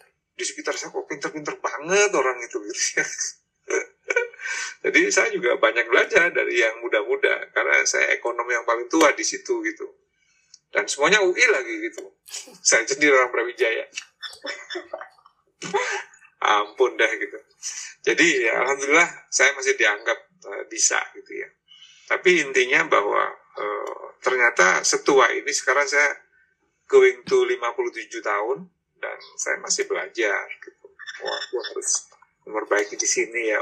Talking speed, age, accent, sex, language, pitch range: 130 wpm, 30-49, native, male, Indonesian, 375-440 Hz